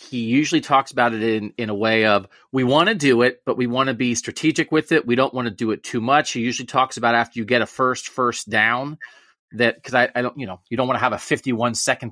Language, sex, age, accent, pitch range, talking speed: English, male, 30-49, American, 115-145 Hz, 280 wpm